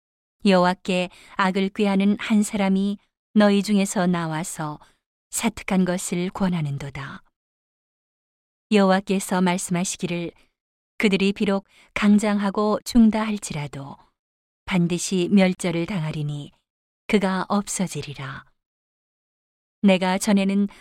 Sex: female